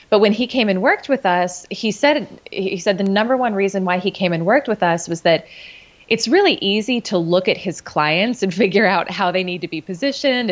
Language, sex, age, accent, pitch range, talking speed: English, female, 20-39, American, 180-225 Hz, 240 wpm